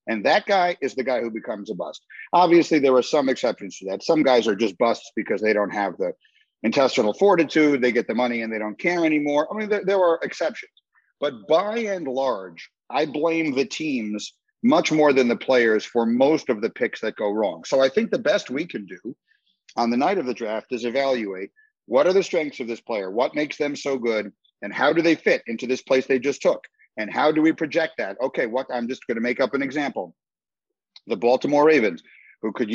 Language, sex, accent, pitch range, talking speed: English, male, American, 120-155 Hz, 230 wpm